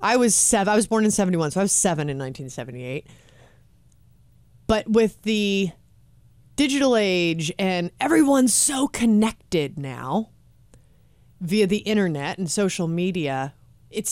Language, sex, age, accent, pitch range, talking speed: English, female, 30-49, American, 160-225 Hz, 130 wpm